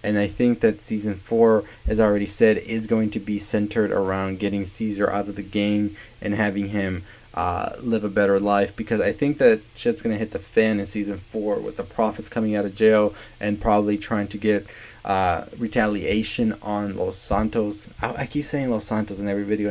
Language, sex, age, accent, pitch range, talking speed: English, male, 20-39, American, 100-110 Hz, 205 wpm